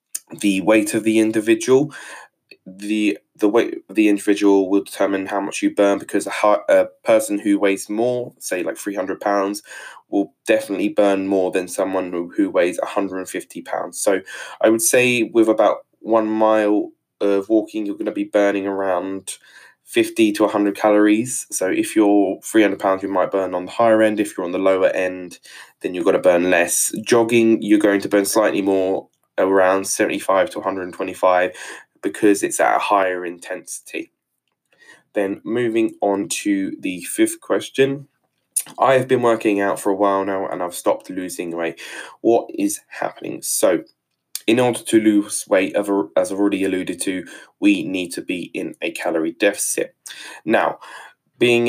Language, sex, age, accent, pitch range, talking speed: English, male, 20-39, British, 95-115 Hz, 165 wpm